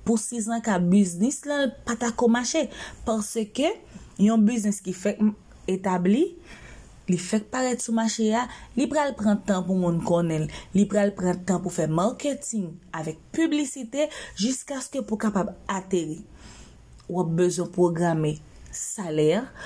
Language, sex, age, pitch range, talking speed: Spanish, female, 30-49, 180-245 Hz, 145 wpm